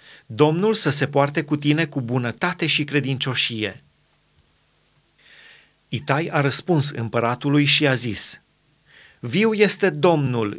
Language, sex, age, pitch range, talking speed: Romanian, male, 30-49, 135-175 Hz, 115 wpm